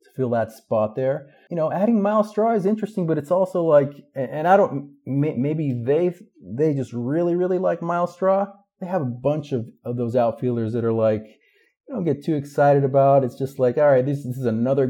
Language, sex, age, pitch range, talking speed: English, male, 30-49, 120-145 Hz, 215 wpm